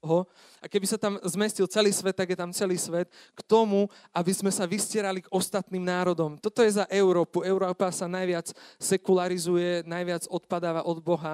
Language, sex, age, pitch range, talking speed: Slovak, male, 30-49, 180-210 Hz, 175 wpm